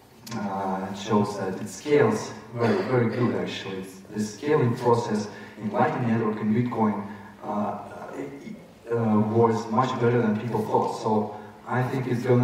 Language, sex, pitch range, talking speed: English, male, 105-120 Hz, 145 wpm